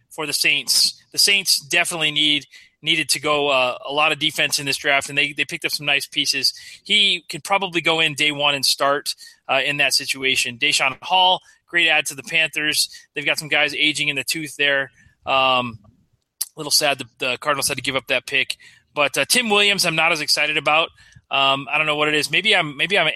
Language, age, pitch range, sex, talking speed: English, 30-49, 135-160 Hz, male, 225 wpm